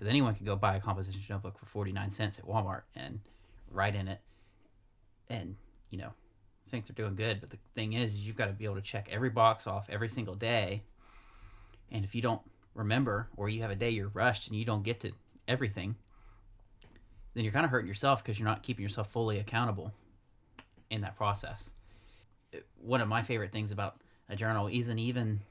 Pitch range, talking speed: 100-115 Hz, 200 wpm